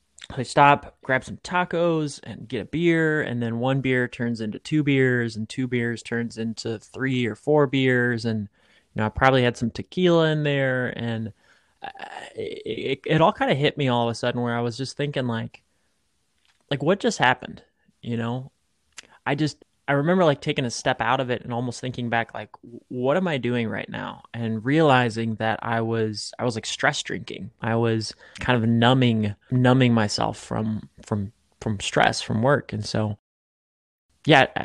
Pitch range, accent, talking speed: 115-140 Hz, American, 185 wpm